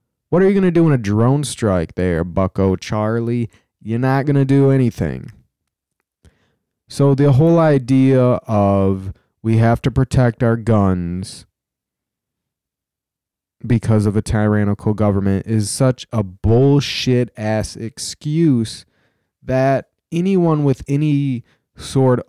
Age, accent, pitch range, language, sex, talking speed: 20-39, American, 95-125 Hz, English, male, 125 wpm